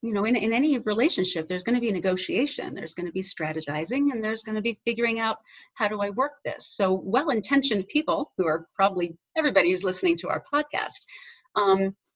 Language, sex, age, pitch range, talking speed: English, female, 40-59, 190-275 Hz, 205 wpm